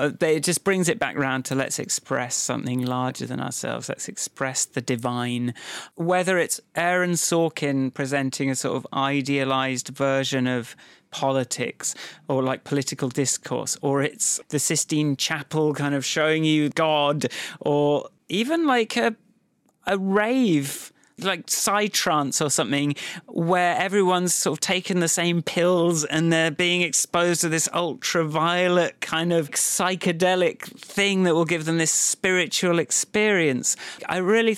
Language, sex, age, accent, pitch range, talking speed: English, male, 30-49, British, 140-180 Hz, 140 wpm